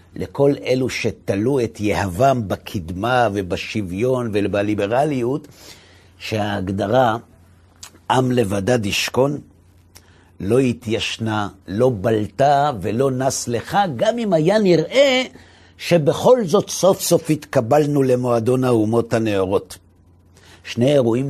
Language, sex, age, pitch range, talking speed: Hebrew, male, 50-69, 100-135 Hz, 95 wpm